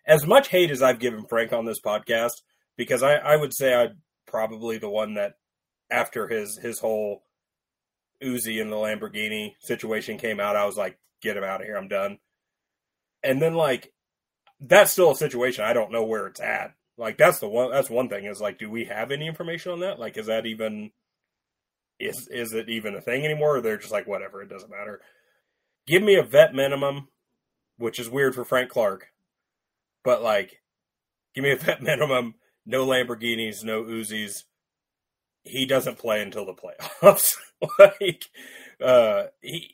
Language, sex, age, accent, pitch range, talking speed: English, male, 30-49, American, 110-145 Hz, 180 wpm